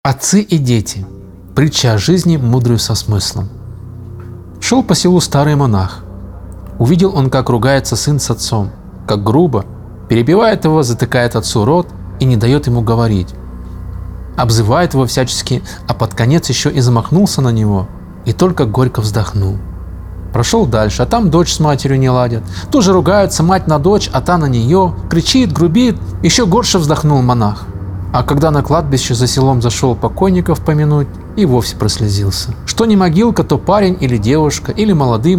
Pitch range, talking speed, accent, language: 110-165 Hz, 155 wpm, native, Russian